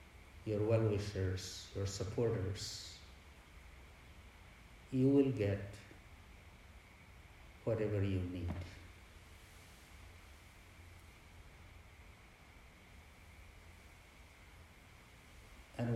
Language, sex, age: English, male, 60-79